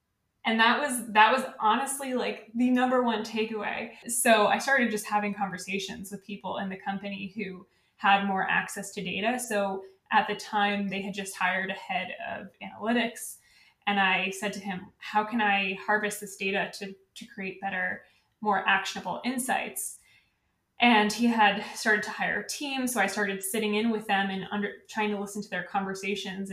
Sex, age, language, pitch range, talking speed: female, 20-39, English, 195-220 Hz, 185 wpm